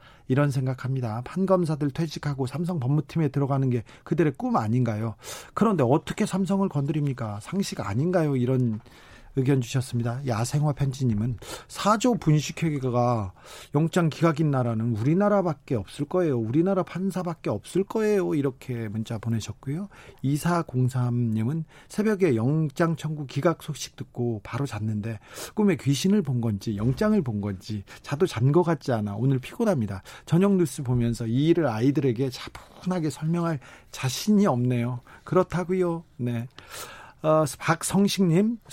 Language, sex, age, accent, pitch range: Korean, male, 40-59, native, 125-170 Hz